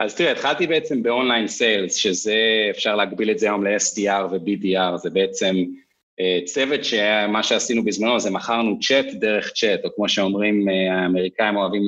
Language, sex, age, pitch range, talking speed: Hebrew, male, 30-49, 95-130 Hz, 150 wpm